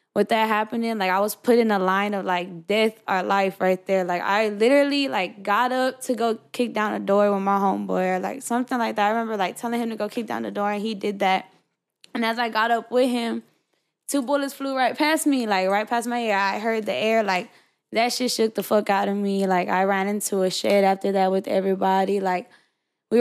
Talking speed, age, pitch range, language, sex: 245 wpm, 10-29, 190-230 Hz, English, female